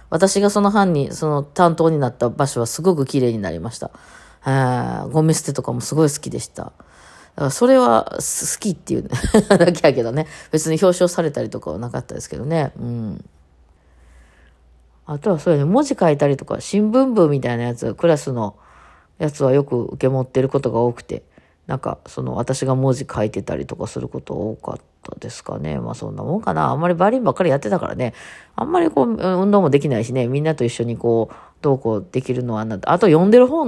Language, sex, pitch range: Japanese, female, 115-160 Hz